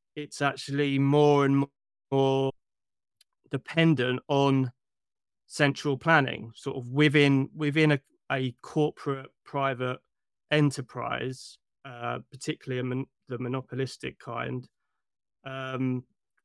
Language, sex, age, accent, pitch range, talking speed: English, male, 20-39, British, 130-145 Hz, 95 wpm